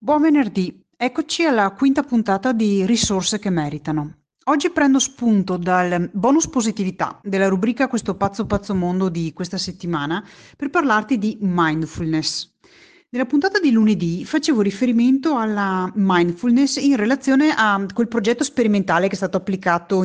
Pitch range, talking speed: 170-240 Hz, 140 wpm